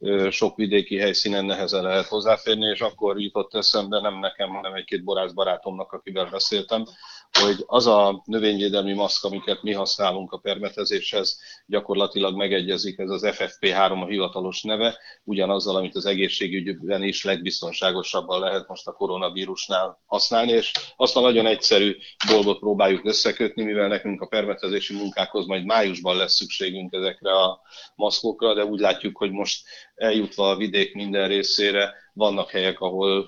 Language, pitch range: Hungarian, 95-110 Hz